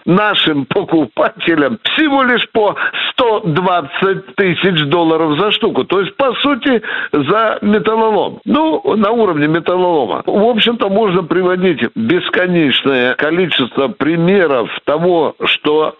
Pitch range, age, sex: 150-210 Hz, 60-79, male